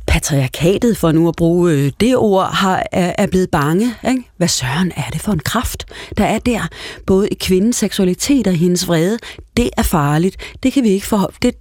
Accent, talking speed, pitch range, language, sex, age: native, 205 wpm, 175-230 Hz, Danish, female, 30-49